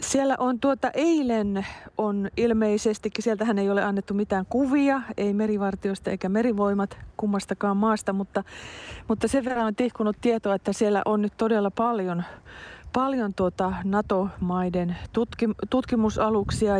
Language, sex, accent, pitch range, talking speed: Finnish, female, native, 190-225 Hz, 125 wpm